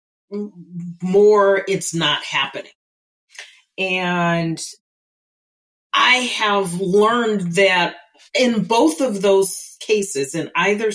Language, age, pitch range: English, 40-59, 160-205 Hz